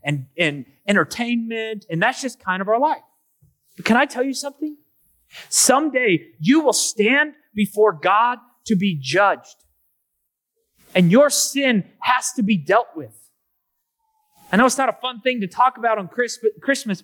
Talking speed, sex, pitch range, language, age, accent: 160 wpm, male, 205-270 Hz, English, 30-49, American